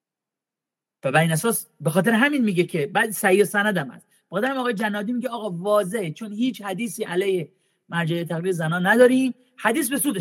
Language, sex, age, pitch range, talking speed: Persian, male, 40-59, 175-250 Hz, 170 wpm